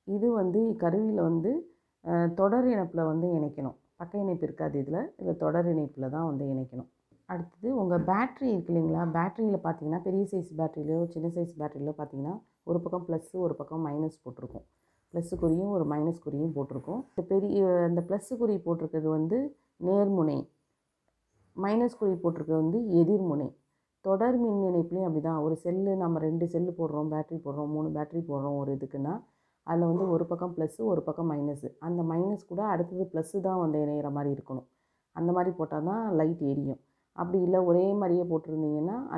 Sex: female